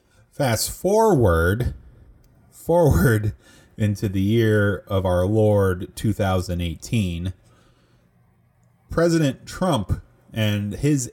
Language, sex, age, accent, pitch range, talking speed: English, male, 30-49, American, 90-115 Hz, 80 wpm